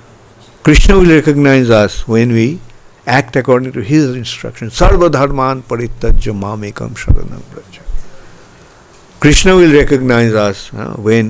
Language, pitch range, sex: English, 105-135 Hz, male